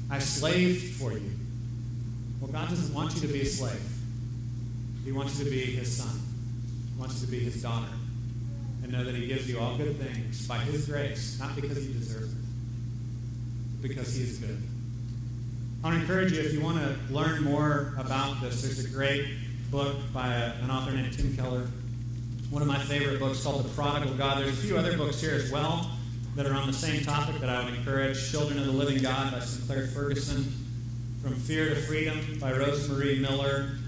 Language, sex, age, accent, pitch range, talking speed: English, male, 30-49, American, 120-140 Hz, 200 wpm